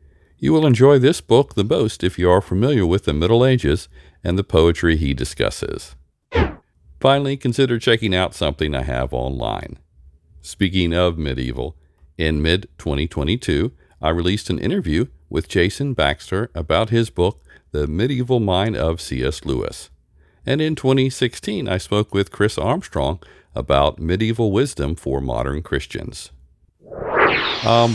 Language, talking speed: English, 135 wpm